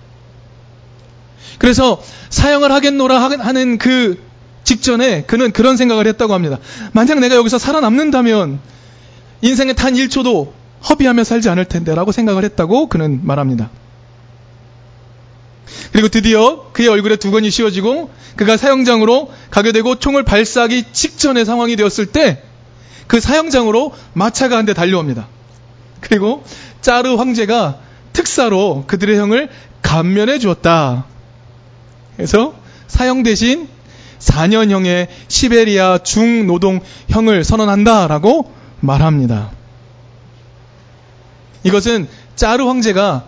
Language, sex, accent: Korean, male, native